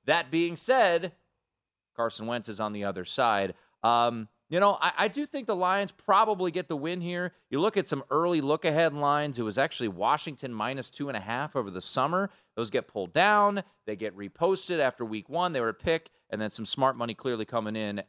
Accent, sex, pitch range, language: American, male, 110-170 Hz, English